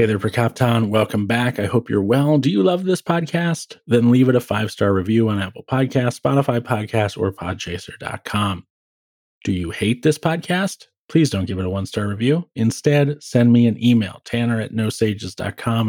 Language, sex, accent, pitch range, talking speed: English, male, American, 100-120 Hz, 180 wpm